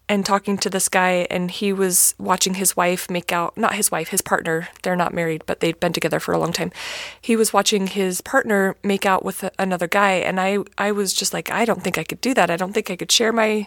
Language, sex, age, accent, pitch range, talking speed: English, female, 30-49, American, 185-225 Hz, 260 wpm